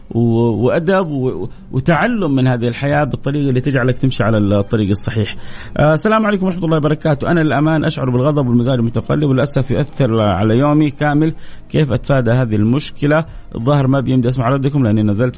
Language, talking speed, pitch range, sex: Arabic, 155 wpm, 110-140 Hz, male